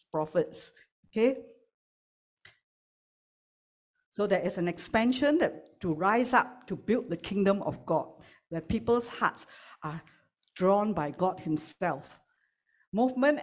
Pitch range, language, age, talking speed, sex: 170-215 Hz, English, 60-79, 105 wpm, female